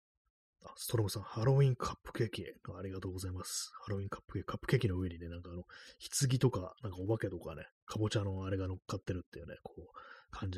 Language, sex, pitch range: Japanese, male, 90-115 Hz